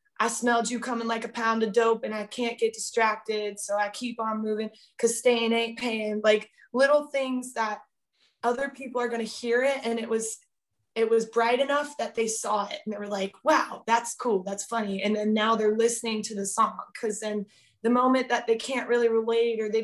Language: English